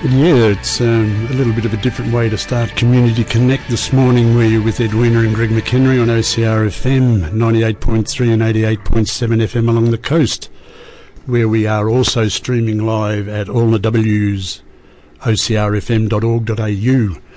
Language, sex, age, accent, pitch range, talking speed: English, male, 60-79, Australian, 110-130 Hz, 150 wpm